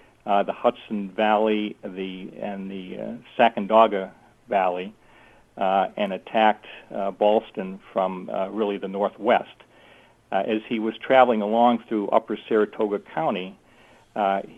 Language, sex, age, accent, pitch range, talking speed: English, male, 60-79, American, 100-115 Hz, 130 wpm